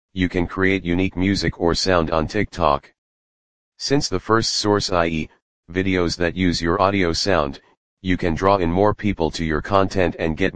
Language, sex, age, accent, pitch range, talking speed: English, male, 40-59, American, 80-95 Hz, 175 wpm